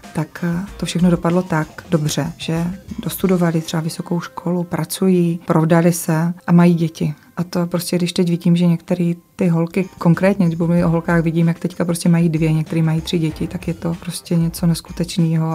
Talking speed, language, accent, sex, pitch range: 180 wpm, Czech, native, female, 165-175 Hz